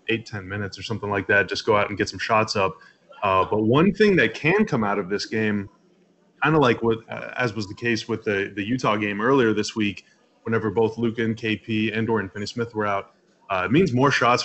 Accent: American